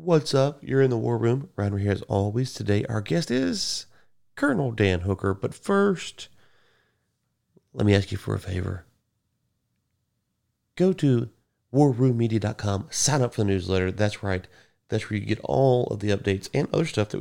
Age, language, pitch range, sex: 30-49, English, 95-115 Hz, male